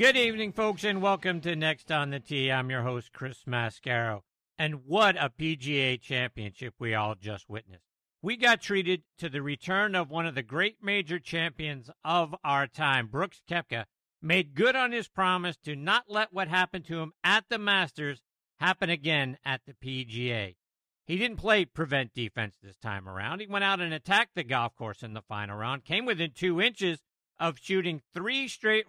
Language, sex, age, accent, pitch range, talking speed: English, male, 50-69, American, 125-185 Hz, 185 wpm